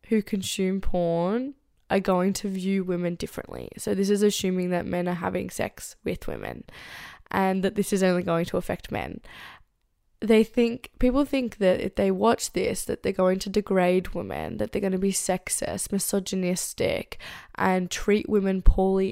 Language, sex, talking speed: English, female, 175 wpm